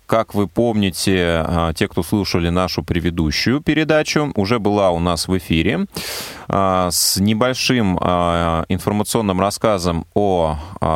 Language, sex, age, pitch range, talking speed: Russian, male, 30-49, 85-110 Hz, 110 wpm